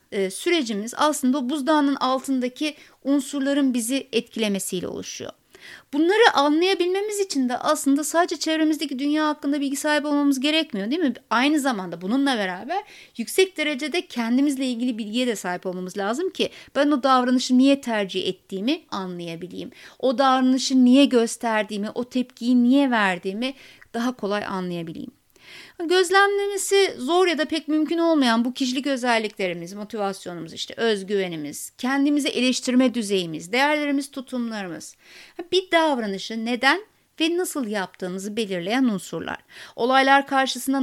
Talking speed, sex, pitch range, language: 120 wpm, female, 225-280 Hz, Turkish